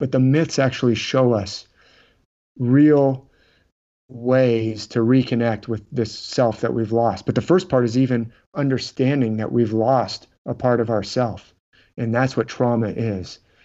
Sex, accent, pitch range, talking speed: male, American, 110-130 Hz, 155 wpm